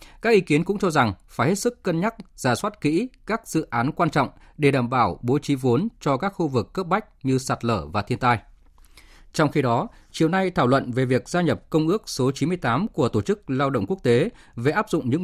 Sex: male